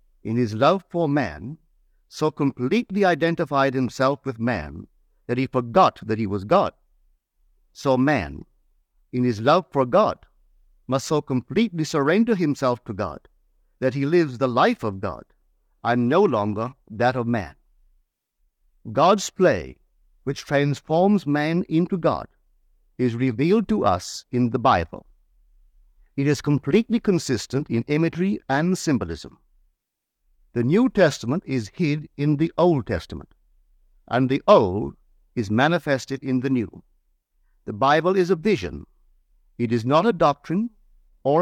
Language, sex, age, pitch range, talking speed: English, male, 50-69, 100-165 Hz, 140 wpm